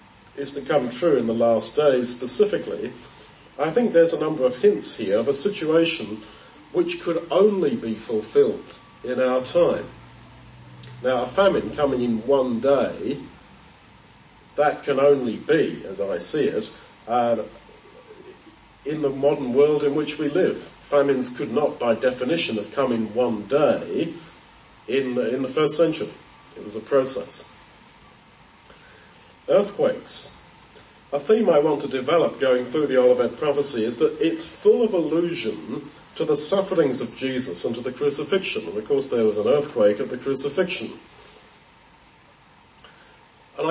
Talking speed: 150 wpm